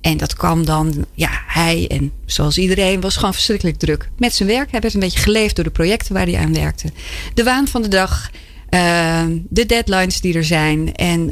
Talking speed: 210 wpm